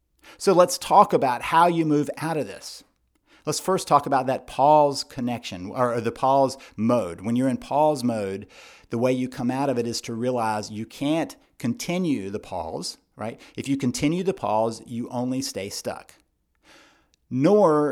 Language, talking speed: English, 175 wpm